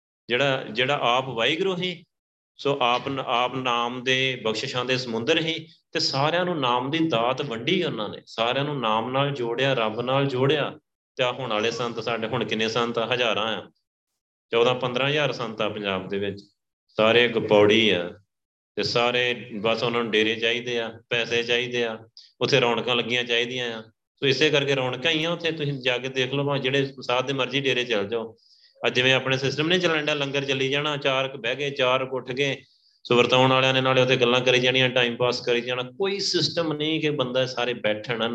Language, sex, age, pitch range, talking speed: Punjabi, male, 30-49, 115-140 Hz, 180 wpm